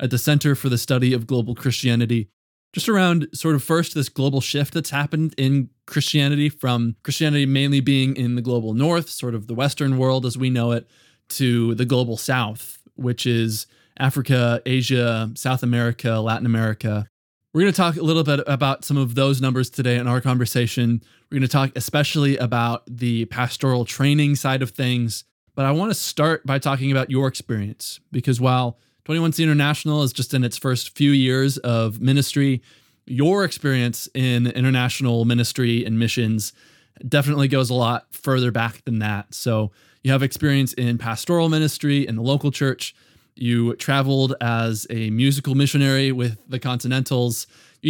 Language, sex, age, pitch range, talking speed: English, male, 20-39, 120-140 Hz, 170 wpm